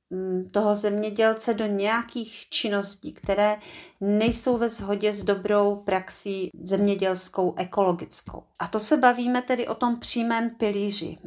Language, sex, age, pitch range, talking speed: Czech, female, 30-49, 190-220 Hz, 125 wpm